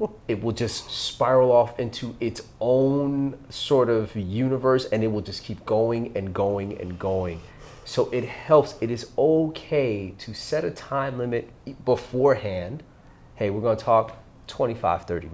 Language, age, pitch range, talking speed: English, 30-49, 100-135 Hz, 155 wpm